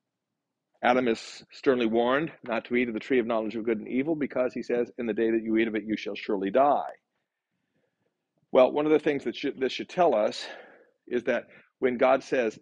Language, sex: English, male